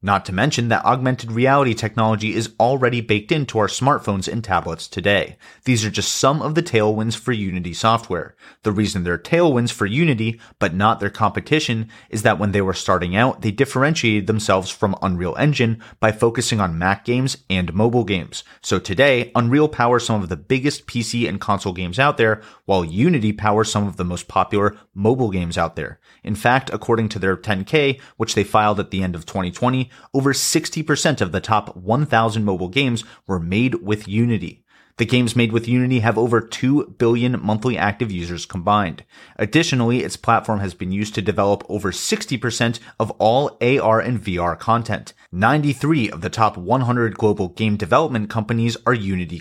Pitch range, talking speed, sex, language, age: 100-125 Hz, 180 wpm, male, English, 30-49